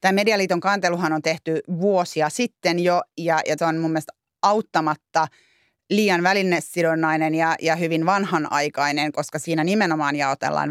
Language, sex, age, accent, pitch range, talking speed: Finnish, female, 30-49, native, 160-200 Hz, 140 wpm